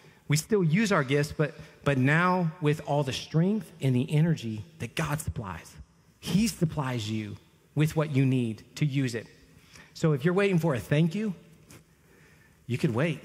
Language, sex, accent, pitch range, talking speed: English, male, American, 140-180 Hz, 175 wpm